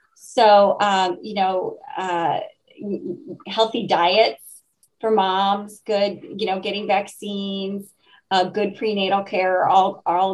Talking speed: 120 wpm